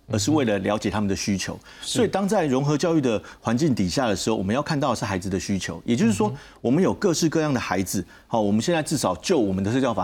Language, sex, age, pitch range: Chinese, male, 40-59, 100-140 Hz